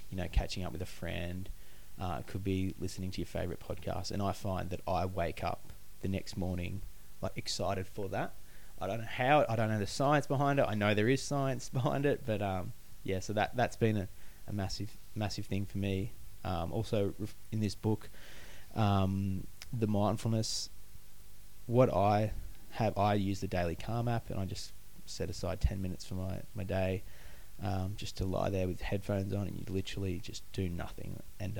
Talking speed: 200 wpm